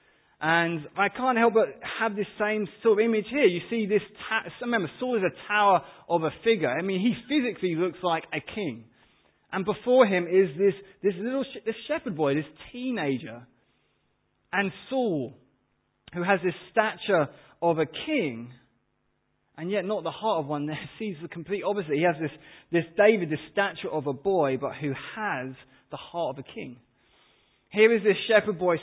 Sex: male